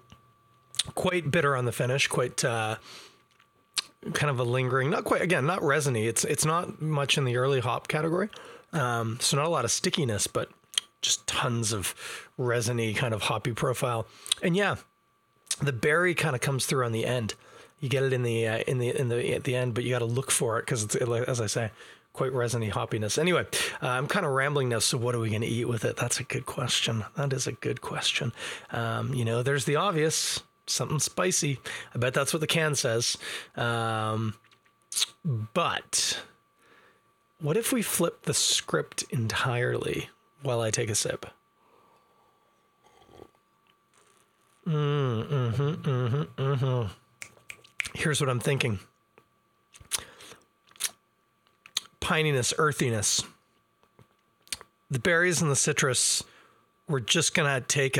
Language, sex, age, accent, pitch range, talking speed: English, male, 30-49, American, 115-145 Hz, 165 wpm